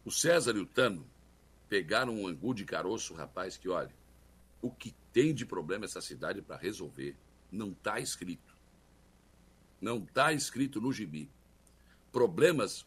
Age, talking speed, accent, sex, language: 60-79, 145 wpm, Brazilian, male, Portuguese